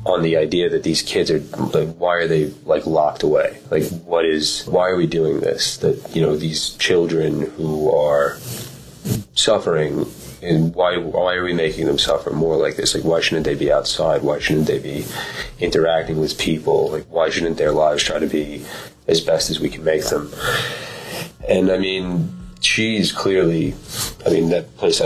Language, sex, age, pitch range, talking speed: English, male, 30-49, 80-95 Hz, 185 wpm